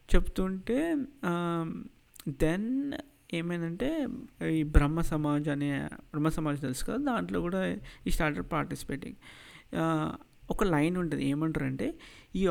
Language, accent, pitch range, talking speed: Telugu, native, 145-180 Hz, 105 wpm